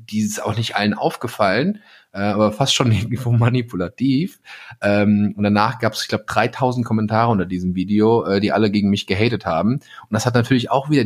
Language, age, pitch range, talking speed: German, 30-49, 90-115 Hz, 185 wpm